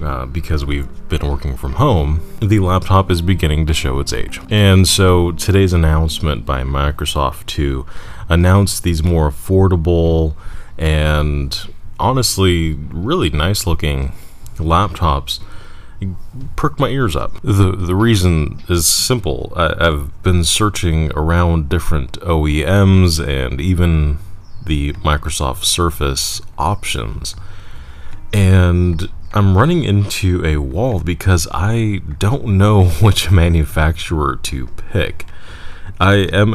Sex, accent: male, American